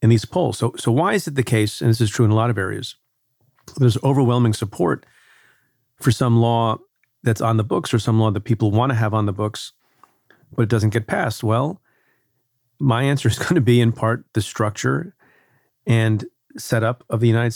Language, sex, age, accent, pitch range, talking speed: English, male, 40-59, American, 110-130 Hz, 200 wpm